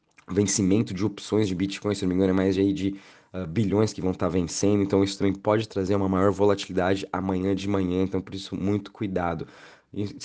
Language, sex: Portuguese, male